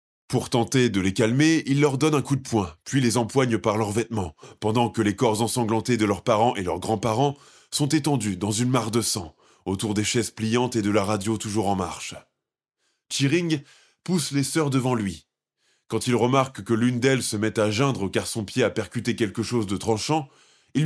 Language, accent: French, French